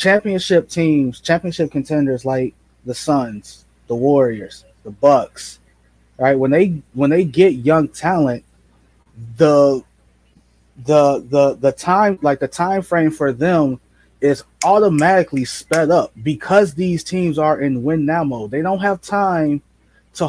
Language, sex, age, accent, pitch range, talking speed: English, male, 20-39, American, 130-180 Hz, 140 wpm